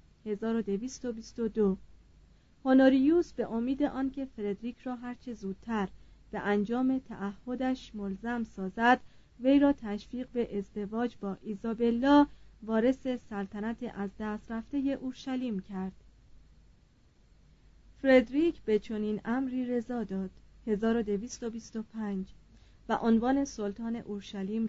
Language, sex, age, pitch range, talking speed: Persian, female, 30-49, 205-250 Hz, 95 wpm